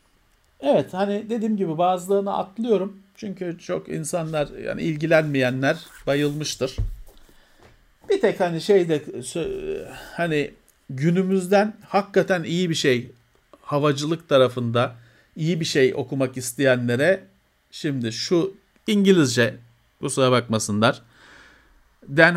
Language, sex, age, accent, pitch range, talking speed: Turkish, male, 50-69, native, 125-175 Hz, 95 wpm